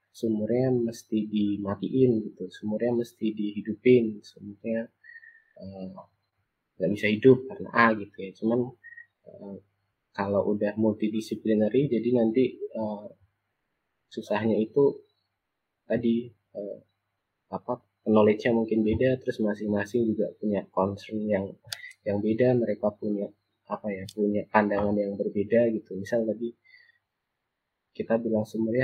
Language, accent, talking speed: Indonesian, native, 110 wpm